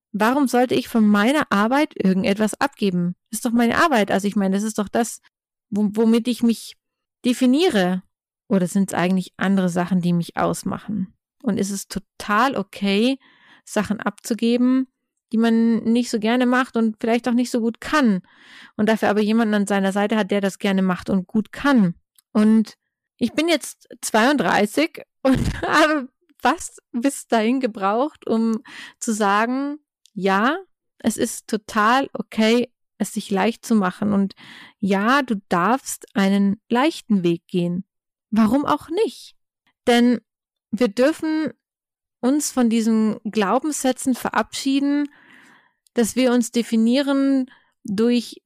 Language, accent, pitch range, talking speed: German, German, 205-255 Hz, 140 wpm